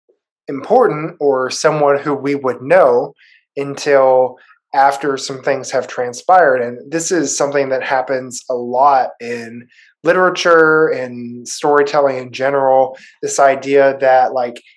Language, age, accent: English, 20-39, American